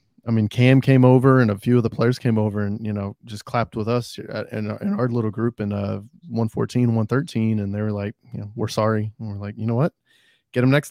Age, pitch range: 20-39, 105-130 Hz